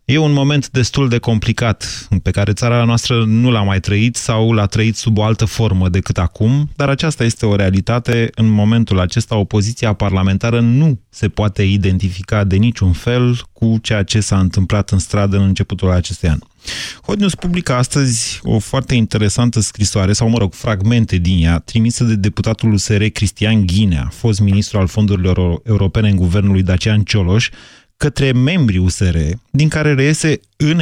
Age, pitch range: 30-49, 100-125 Hz